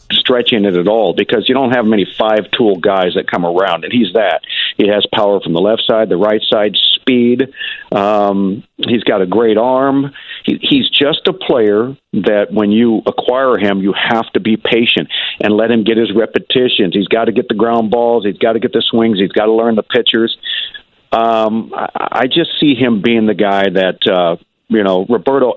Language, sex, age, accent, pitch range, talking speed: English, male, 50-69, American, 110-135 Hz, 205 wpm